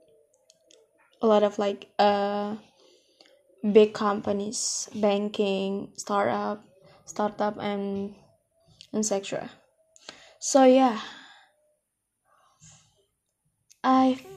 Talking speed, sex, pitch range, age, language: 65 wpm, female, 205-265 Hz, 20-39, English